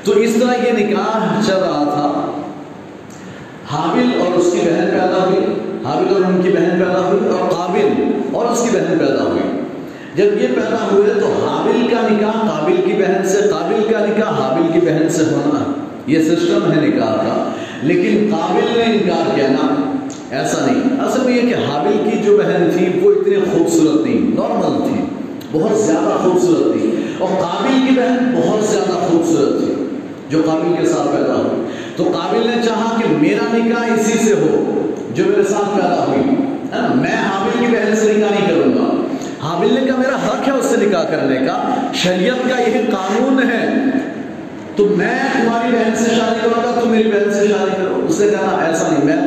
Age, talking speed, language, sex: 40-59, 125 wpm, Urdu, male